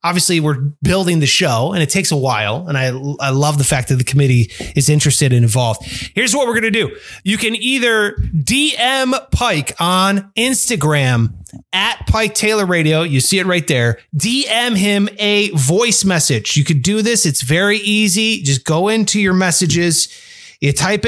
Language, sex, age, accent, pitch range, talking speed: English, male, 30-49, American, 145-210 Hz, 180 wpm